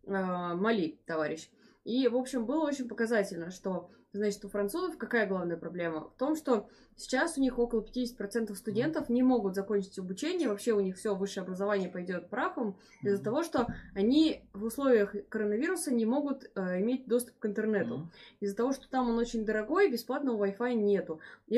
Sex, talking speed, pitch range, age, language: female, 170 wpm, 190-245 Hz, 20-39, Russian